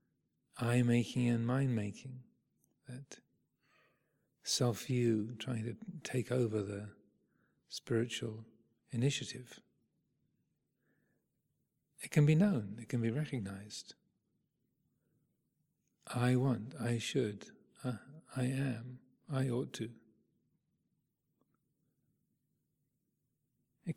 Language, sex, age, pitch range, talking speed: English, male, 40-59, 115-145 Hz, 85 wpm